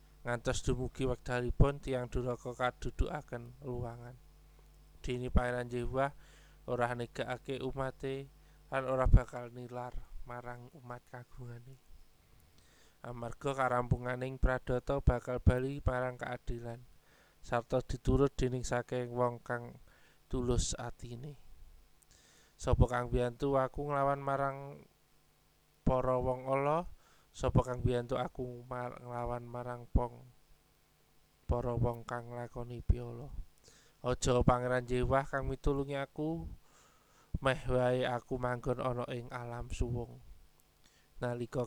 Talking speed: 105 wpm